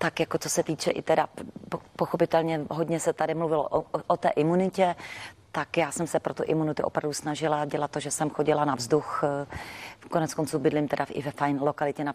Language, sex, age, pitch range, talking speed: Czech, female, 40-59, 150-170 Hz, 200 wpm